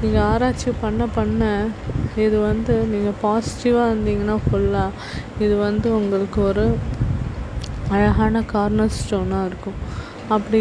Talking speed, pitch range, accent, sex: 105 wpm, 205-230 Hz, native, female